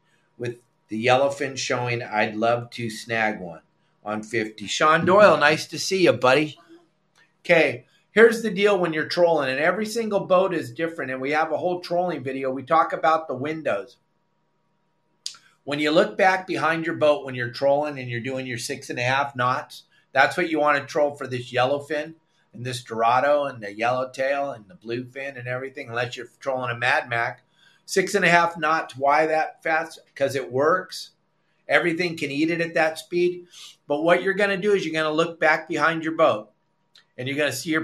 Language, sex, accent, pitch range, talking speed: English, male, American, 135-175 Hz, 200 wpm